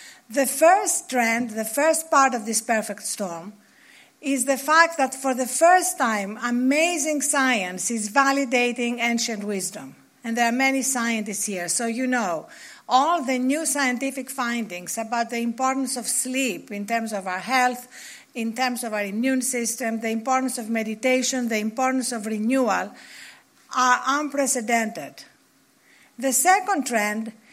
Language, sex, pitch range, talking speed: English, female, 230-275 Hz, 145 wpm